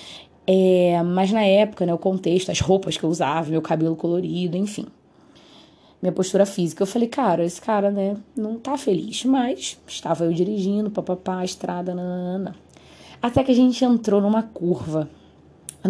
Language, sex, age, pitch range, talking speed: Portuguese, female, 20-39, 170-205 Hz, 160 wpm